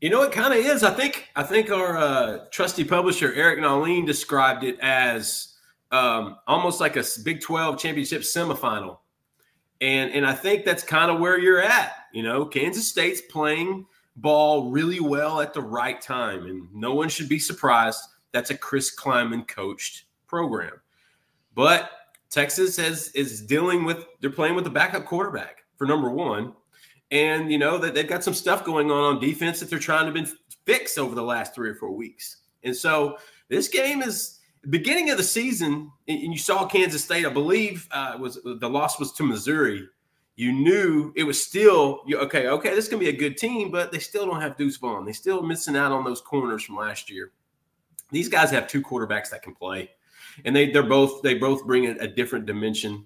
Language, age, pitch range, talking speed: English, 30-49, 135-175 Hz, 195 wpm